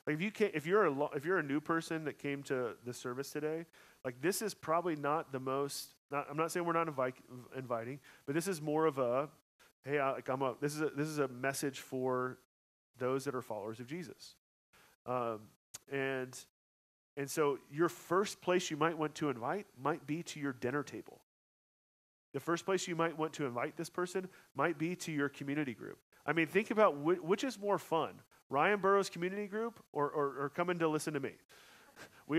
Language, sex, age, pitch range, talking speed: English, male, 30-49, 135-175 Hz, 205 wpm